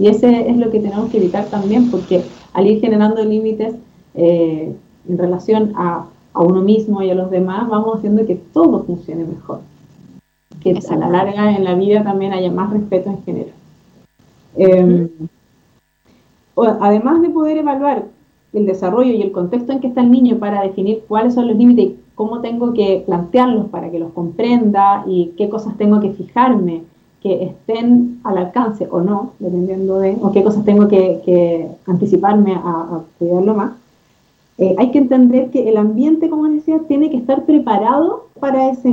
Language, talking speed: Spanish, 175 wpm